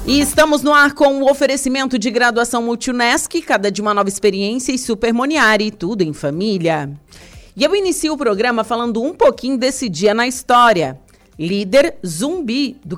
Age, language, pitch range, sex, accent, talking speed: 40-59, Portuguese, 185-240 Hz, female, Brazilian, 170 wpm